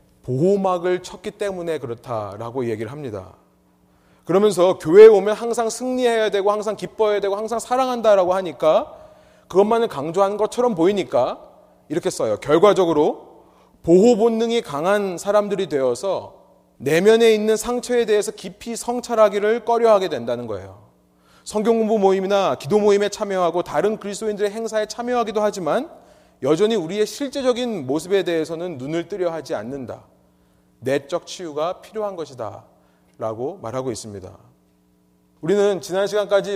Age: 30-49